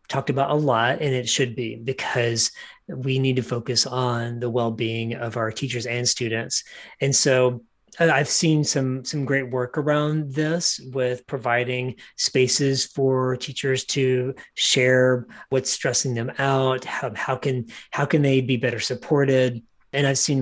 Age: 30-49